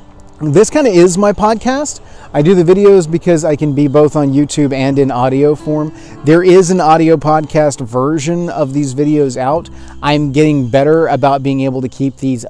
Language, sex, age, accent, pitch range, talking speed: English, male, 30-49, American, 115-145 Hz, 190 wpm